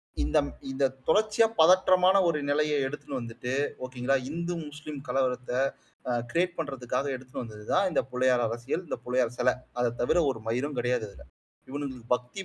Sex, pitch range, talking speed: male, 130-150 Hz, 145 wpm